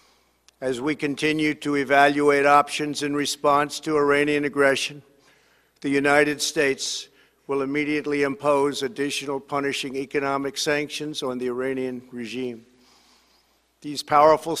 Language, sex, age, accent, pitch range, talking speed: English, male, 50-69, American, 130-145 Hz, 110 wpm